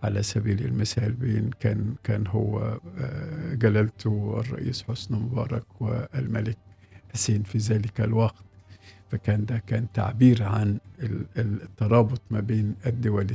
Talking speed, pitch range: 110 wpm, 100-120 Hz